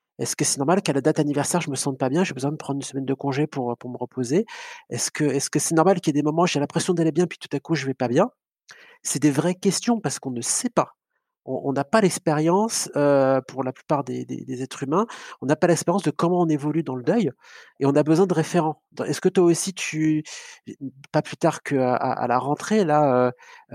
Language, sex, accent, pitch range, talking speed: French, male, French, 130-170 Hz, 265 wpm